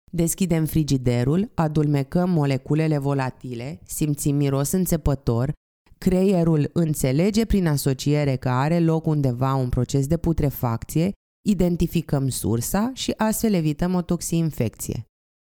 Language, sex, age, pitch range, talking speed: Romanian, female, 20-39, 140-180 Hz, 105 wpm